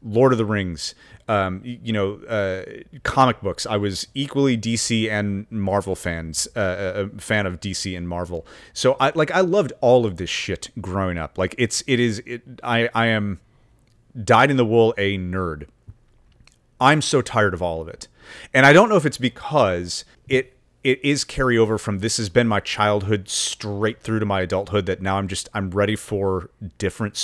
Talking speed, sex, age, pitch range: 185 wpm, male, 30-49, 100-125 Hz